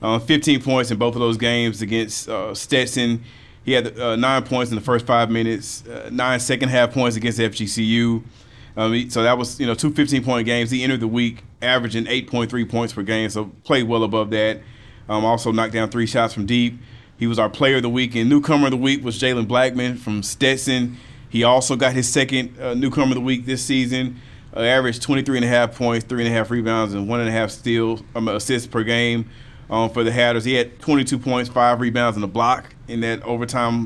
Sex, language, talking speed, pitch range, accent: male, English, 210 wpm, 115-130 Hz, American